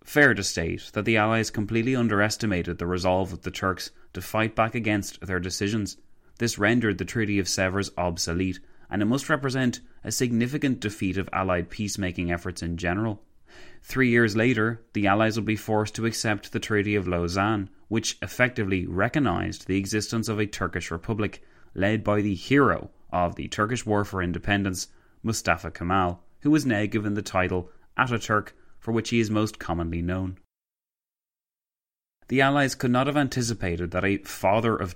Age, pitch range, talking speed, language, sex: 30-49, 95-115 Hz, 170 wpm, English, male